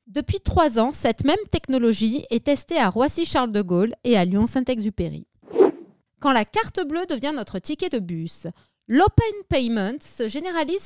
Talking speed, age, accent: 145 wpm, 30-49, French